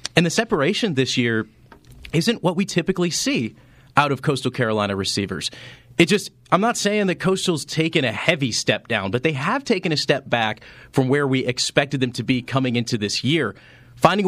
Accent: American